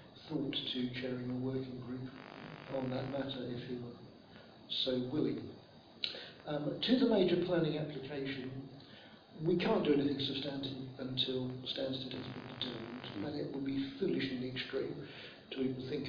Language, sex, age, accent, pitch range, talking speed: English, male, 60-79, British, 130-140 Hz, 150 wpm